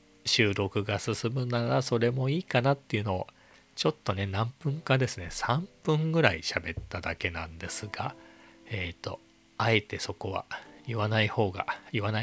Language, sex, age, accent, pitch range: Japanese, male, 40-59, native, 90-130 Hz